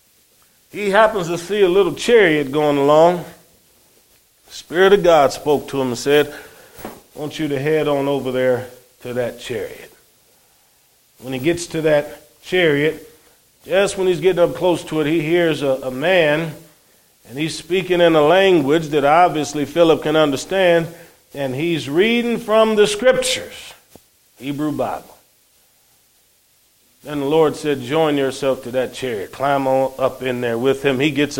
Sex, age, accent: male, 40-59, American